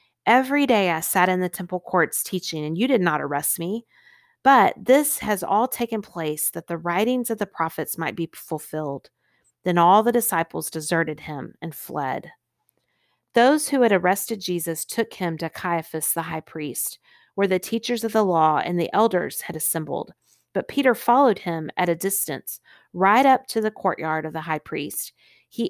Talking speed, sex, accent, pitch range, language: 180 wpm, female, American, 165-235 Hz, English